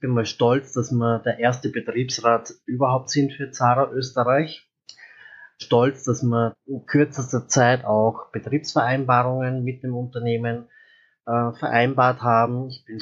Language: German